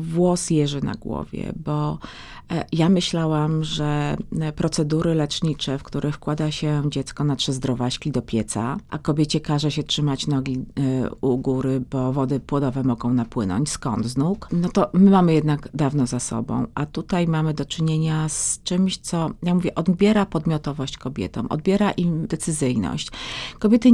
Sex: female